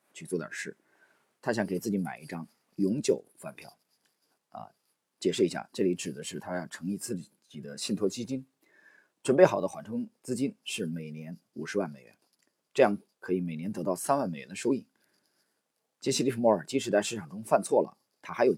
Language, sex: Chinese, male